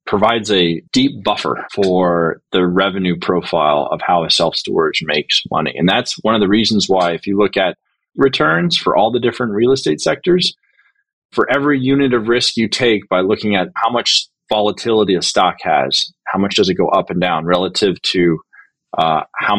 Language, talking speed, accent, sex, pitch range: English, 185 wpm, American, male, 100-135 Hz